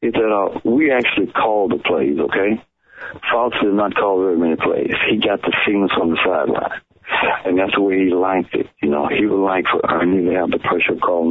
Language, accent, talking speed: English, American, 230 wpm